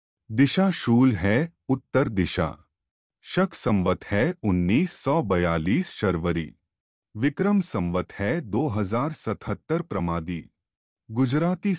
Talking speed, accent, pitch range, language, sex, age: 80 wpm, native, 90-150 Hz, Hindi, male, 30-49